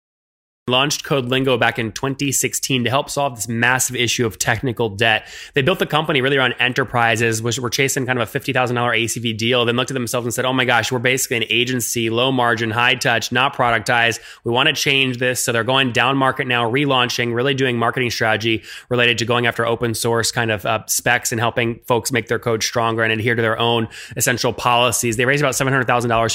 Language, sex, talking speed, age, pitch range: English, male, 215 wpm, 20-39, 120-145 Hz